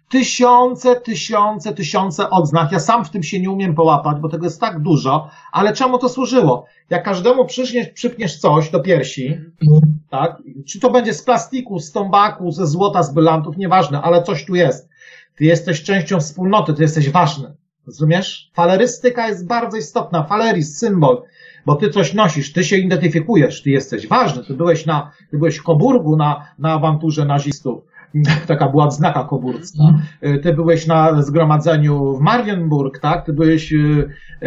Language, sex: Polish, male